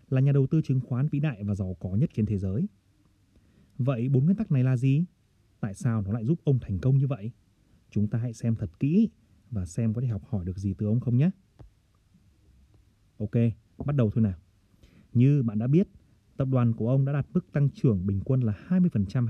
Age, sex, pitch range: 30-49, male, 105-130 Hz